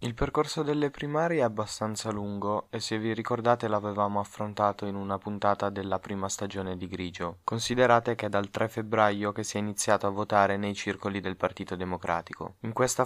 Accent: native